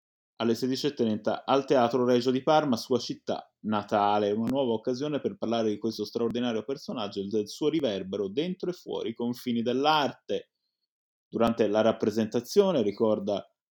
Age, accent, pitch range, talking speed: 20-39, native, 110-140 Hz, 145 wpm